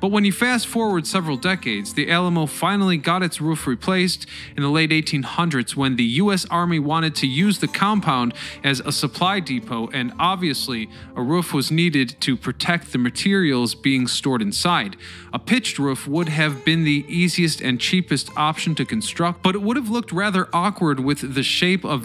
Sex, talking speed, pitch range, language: male, 185 wpm, 140-195 Hz, English